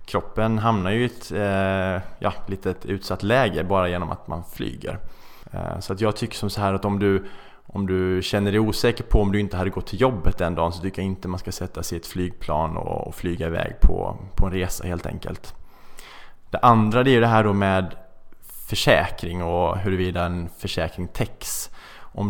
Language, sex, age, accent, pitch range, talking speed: Swedish, male, 20-39, Norwegian, 90-110 Hz, 200 wpm